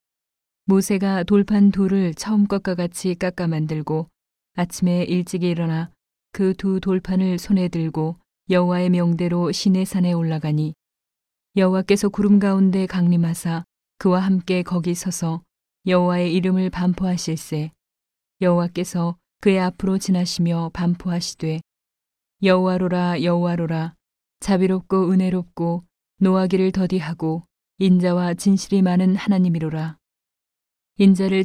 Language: Korean